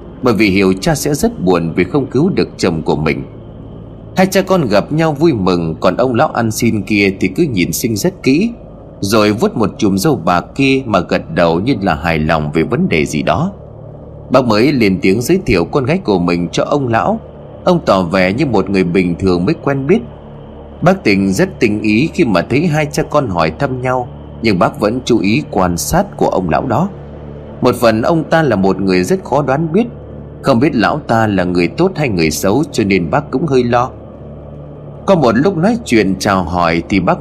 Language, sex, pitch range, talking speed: Vietnamese, male, 85-135 Hz, 220 wpm